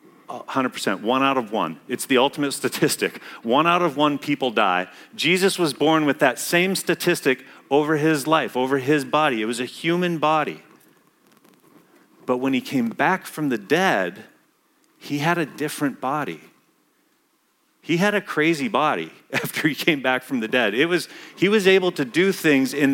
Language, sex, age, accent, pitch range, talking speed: English, male, 40-59, American, 125-160 Hz, 175 wpm